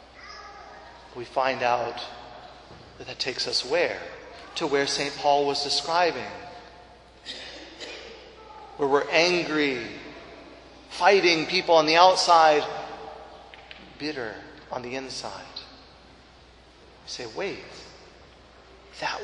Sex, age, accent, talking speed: male, 40-59, American, 95 wpm